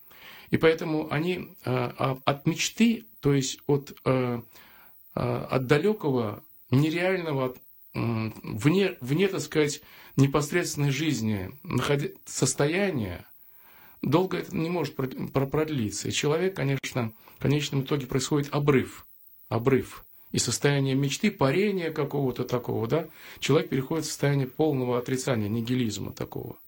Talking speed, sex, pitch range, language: 105 wpm, male, 115-150 Hz, Russian